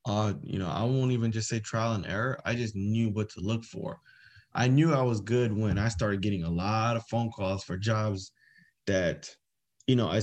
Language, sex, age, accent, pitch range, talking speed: English, male, 20-39, American, 100-120 Hz, 225 wpm